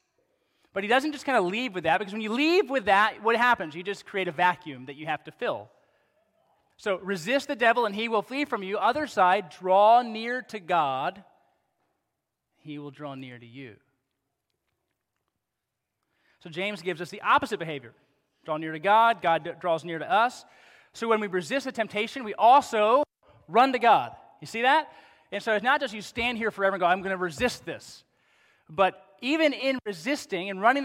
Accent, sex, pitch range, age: American, male, 175-240 Hz, 30-49